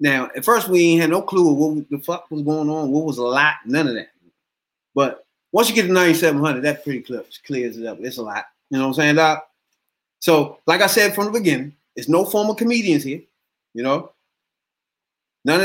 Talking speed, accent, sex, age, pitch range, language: 230 wpm, American, male, 30-49, 140-180 Hz, English